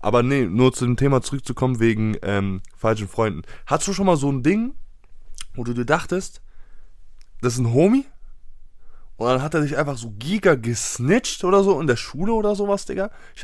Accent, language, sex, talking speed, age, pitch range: German, German, male, 195 wpm, 20-39, 110-160 Hz